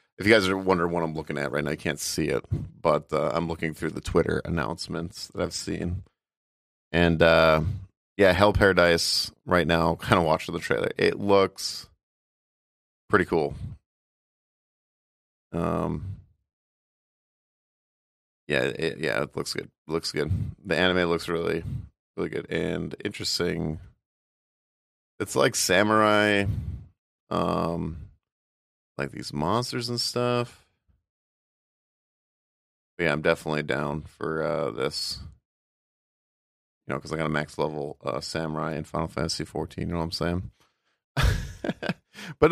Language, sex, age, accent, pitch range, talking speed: English, male, 30-49, American, 80-95 Hz, 135 wpm